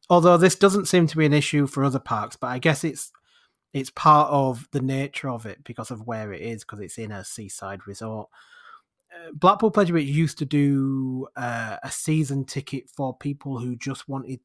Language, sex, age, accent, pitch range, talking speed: English, male, 30-49, British, 125-160 Hz, 205 wpm